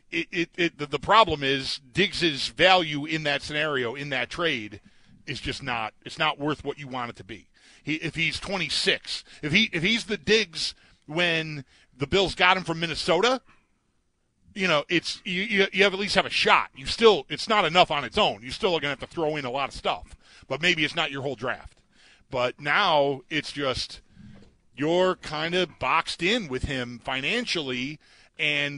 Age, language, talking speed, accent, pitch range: 40-59, English, 200 wpm, American, 140-175 Hz